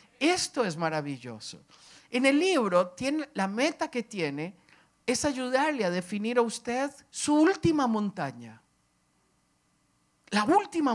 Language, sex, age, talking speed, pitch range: English, male, 50-69, 120 wpm, 170-270 Hz